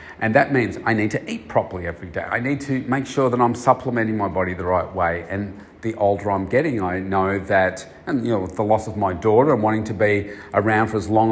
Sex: male